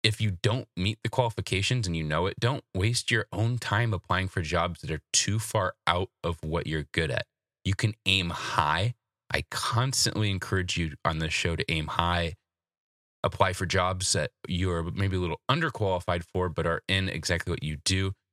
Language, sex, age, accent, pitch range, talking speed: English, male, 20-39, American, 85-110 Hz, 195 wpm